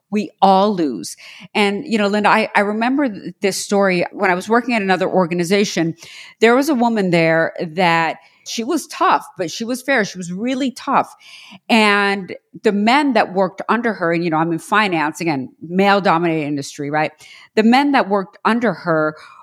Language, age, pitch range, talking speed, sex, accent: English, 50-69, 185-255 Hz, 185 wpm, female, American